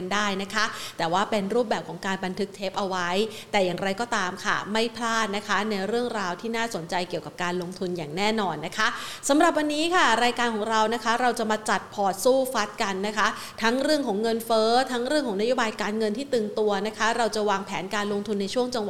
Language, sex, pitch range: Thai, female, 195-240 Hz